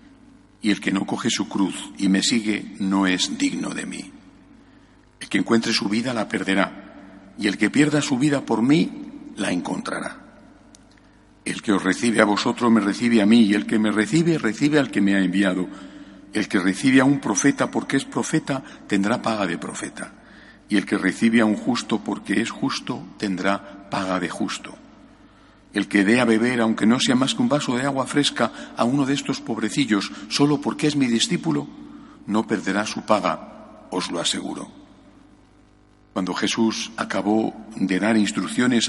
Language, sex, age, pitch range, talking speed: Spanish, male, 60-79, 100-145 Hz, 180 wpm